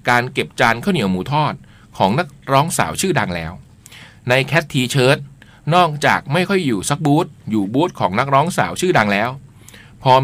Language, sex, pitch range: Thai, male, 120-165 Hz